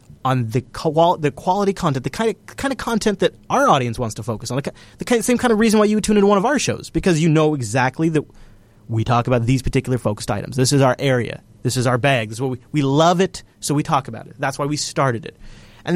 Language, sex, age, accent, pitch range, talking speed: English, male, 30-49, American, 115-145 Hz, 265 wpm